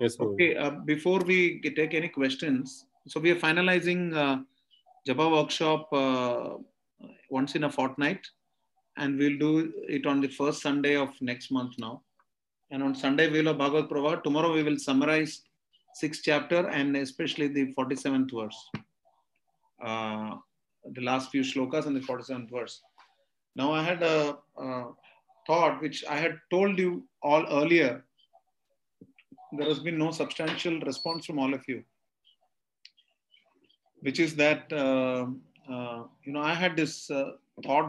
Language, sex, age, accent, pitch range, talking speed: English, male, 30-49, Indian, 130-160 Hz, 145 wpm